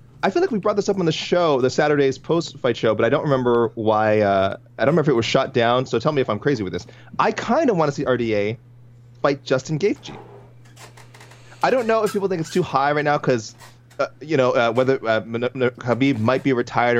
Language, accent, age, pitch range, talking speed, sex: English, American, 30-49, 100-125 Hz, 245 wpm, male